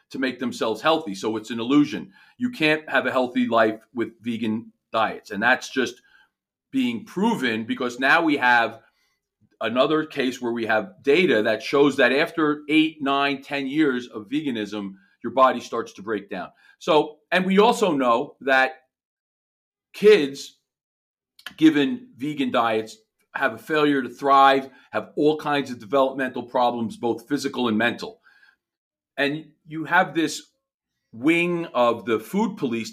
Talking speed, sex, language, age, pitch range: 150 wpm, male, English, 40-59, 120-160 Hz